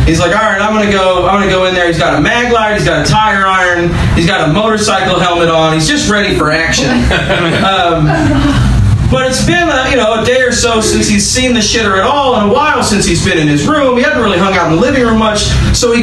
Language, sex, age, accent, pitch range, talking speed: English, male, 30-49, American, 165-225 Hz, 260 wpm